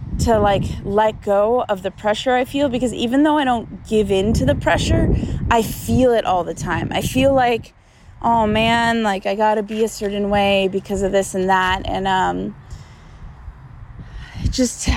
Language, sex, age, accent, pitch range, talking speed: English, female, 20-39, American, 180-225 Hz, 185 wpm